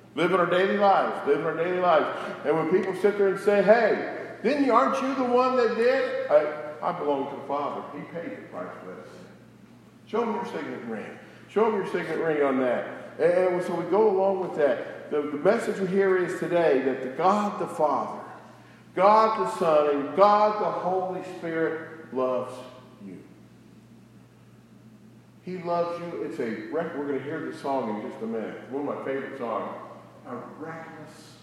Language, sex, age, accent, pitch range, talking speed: English, male, 50-69, American, 125-180 Hz, 190 wpm